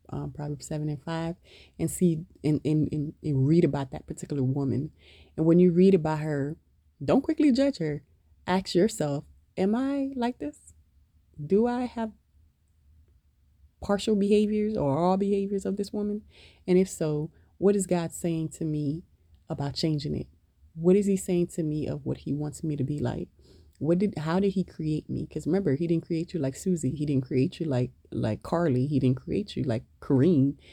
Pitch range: 115-180 Hz